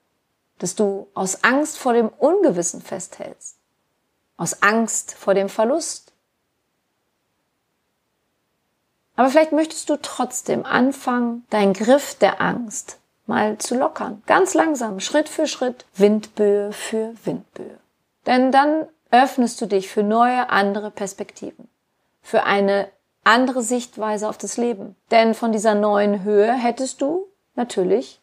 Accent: German